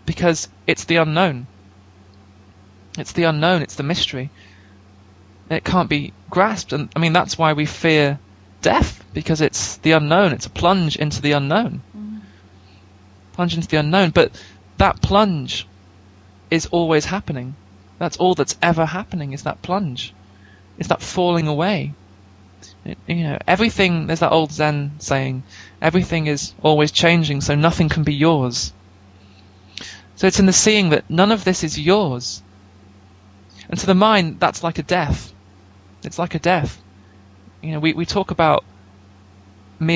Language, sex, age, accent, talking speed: English, male, 20-39, British, 155 wpm